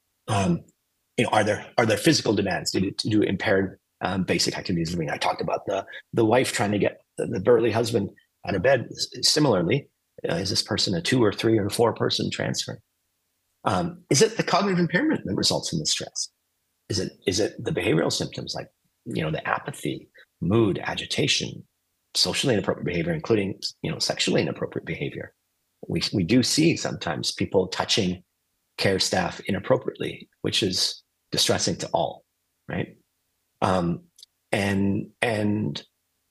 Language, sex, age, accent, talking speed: English, male, 30-49, American, 165 wpm